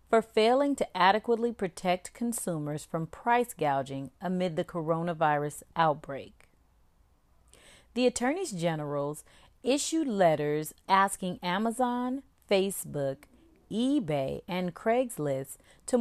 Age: 40-59